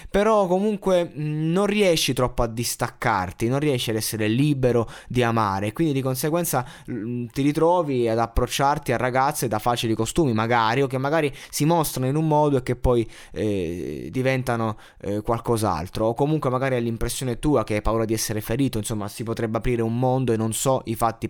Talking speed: 185 wpm